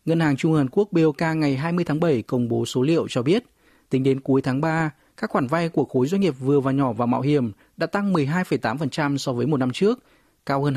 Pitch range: 130-165 Hz